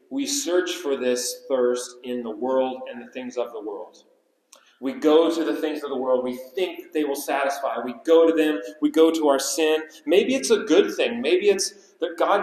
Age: 30-49